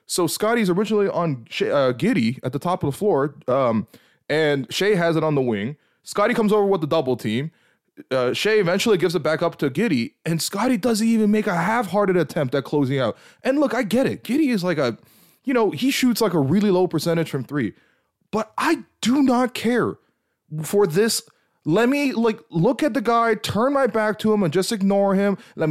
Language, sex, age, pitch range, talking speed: English, male, 20-39, 150-230 Hz, 210 wpm